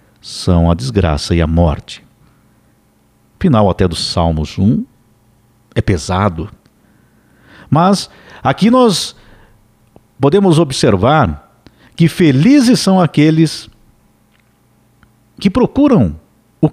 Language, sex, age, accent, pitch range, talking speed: Portuguese, male, 50-69, Brazilian, 95-155 Hz, 90 wpm